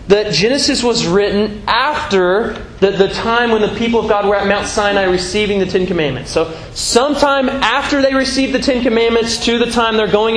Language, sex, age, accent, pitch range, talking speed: English, male, 20-39, American, 200-255 Hz, 195 wpm